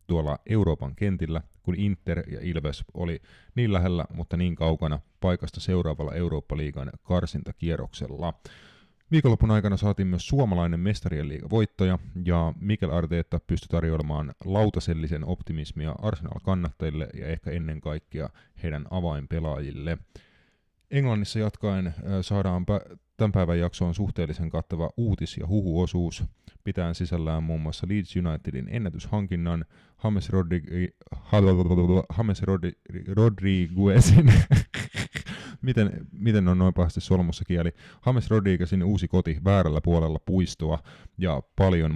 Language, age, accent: Finnish, 30-49, native